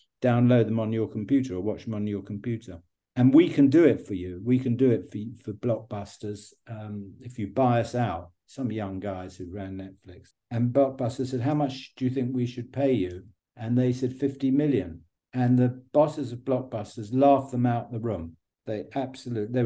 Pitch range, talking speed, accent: 100-130 Hz, 200 wpm, British